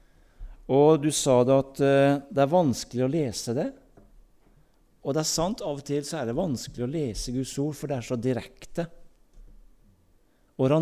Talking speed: 180 wpm